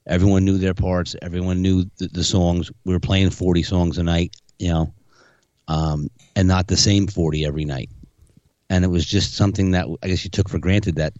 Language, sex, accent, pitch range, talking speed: English, male, American, 85-100 Hz, 210 wpm